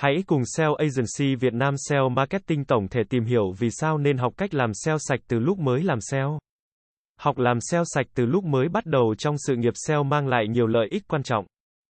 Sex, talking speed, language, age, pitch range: male, 225 wpm, Vietnamese, 20-39, 120-155 Hz